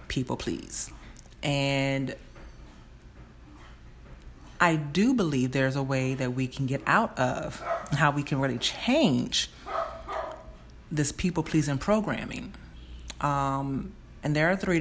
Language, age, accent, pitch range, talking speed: English, 30-49, American, 130-165 Hz, 110 wpm